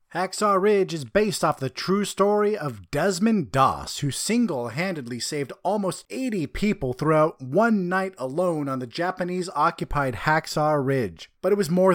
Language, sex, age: English, male, 30-49